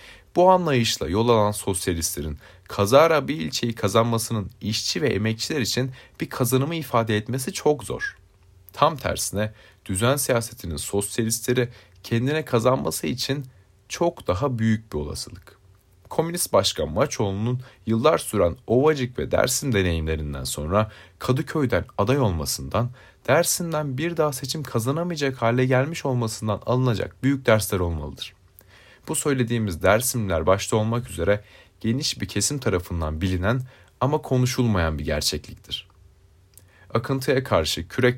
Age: 30-49